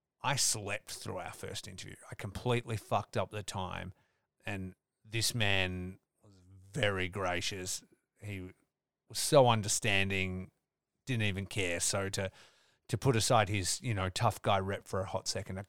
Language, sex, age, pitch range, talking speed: English, male, 30-49, 95-110 Hz, 155 wpm